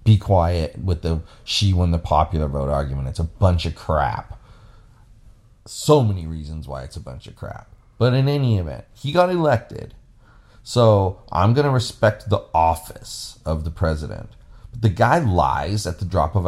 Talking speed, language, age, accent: 180 wpm, English, 30-49, American